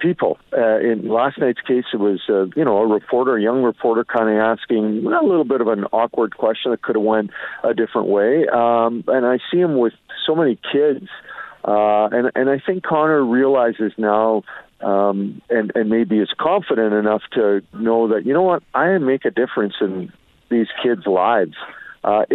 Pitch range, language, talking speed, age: 105-125 Hz, English, 195 wpm, 50-69